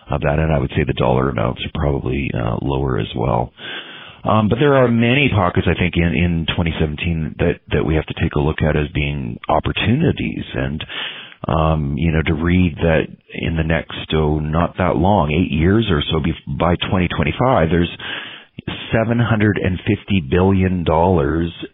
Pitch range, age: 80-90 Hz, 40-59